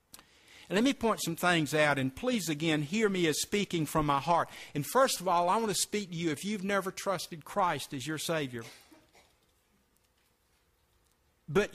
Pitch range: 155-210 Hz